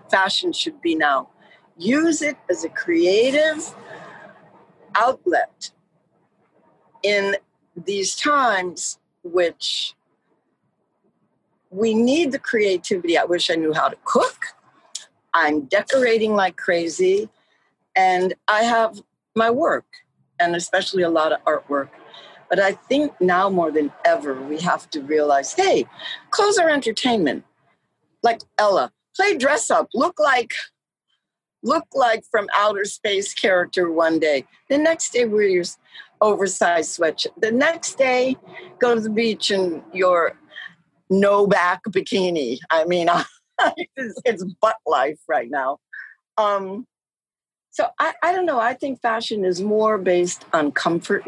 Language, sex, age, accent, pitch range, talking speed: English, female, 60-79, American, 180-285 Hz, 130 wpm